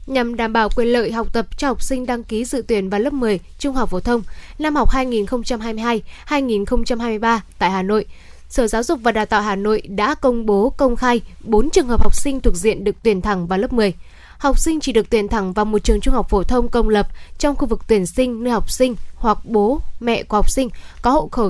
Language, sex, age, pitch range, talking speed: Vietnamese, female, 10-29, 210-255 Hz, 235 wpm